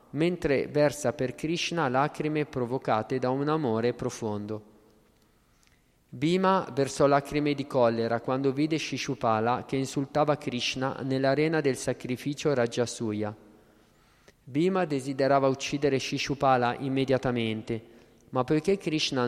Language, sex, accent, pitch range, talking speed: Italian, male, native, 120-145 Hz, 105 wpm